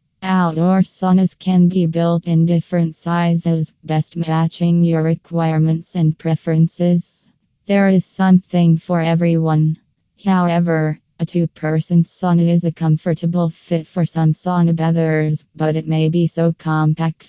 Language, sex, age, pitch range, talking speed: English, female, 20-39, 160-180 Hz, 130 wpm